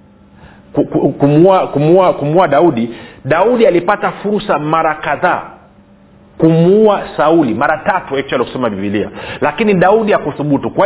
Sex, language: male, Swahili